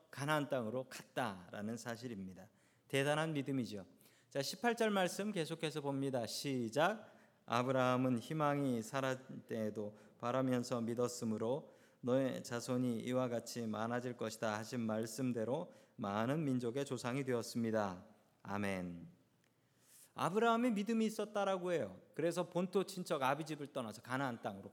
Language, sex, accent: Korean, male, native